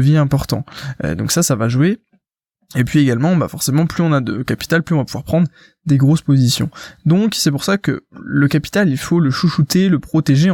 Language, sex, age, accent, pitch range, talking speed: French, male, 20-39, French, 135-170 Hz, 215 wpm